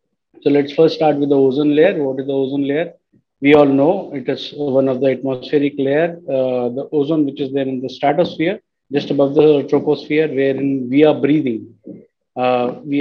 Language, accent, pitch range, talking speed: Hindi, native, 135-155 Hz, 195 wpm